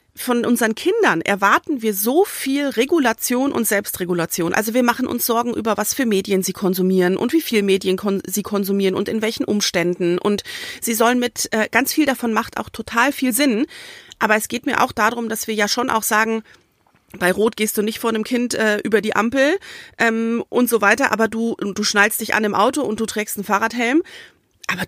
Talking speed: 205 wpm